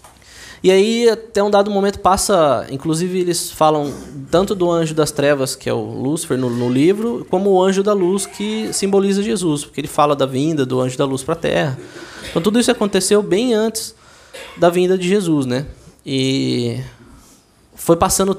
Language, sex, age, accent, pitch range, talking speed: Portuguese, male, 20-39, Brazilian, 140-200 Hz, 185 wpm